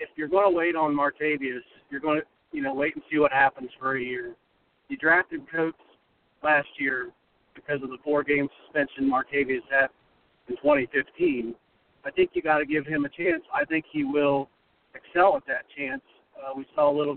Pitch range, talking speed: 140-200 Hz, 195 wpm